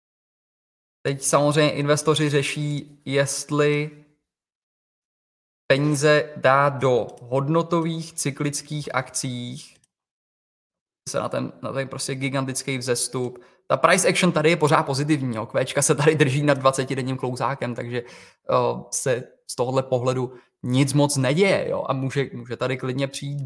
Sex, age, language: male, 20-39, Czech